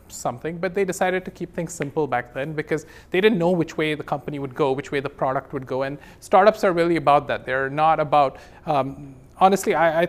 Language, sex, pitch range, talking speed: English, male, 140-175 Hz, 230 wpm